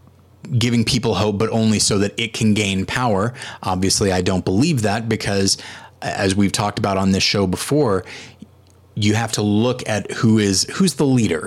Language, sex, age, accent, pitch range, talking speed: English, male, 30-49, American, 95-115 Hz, 185 wpm